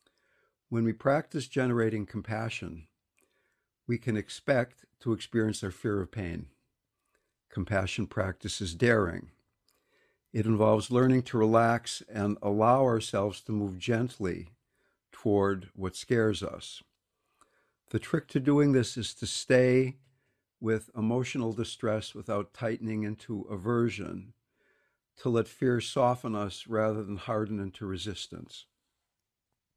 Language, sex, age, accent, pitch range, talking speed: English, male, 60-79, American, 105-125 Hz, 115 wpm